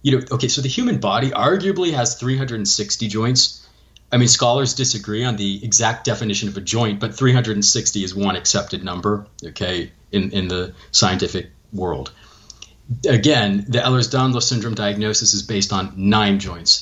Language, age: English, 40-59